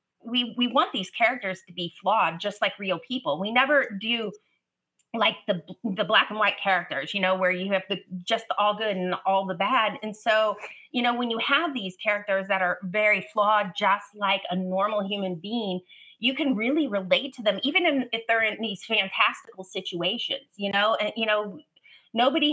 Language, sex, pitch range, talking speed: English, female, 195-245 Hz, 200 wpm